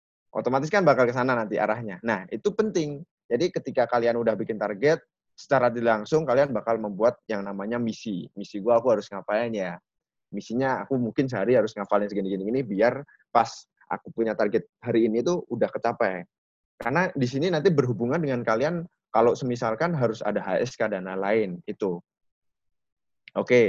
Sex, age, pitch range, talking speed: male, 20-39, 110-135 Hz, 160 wpm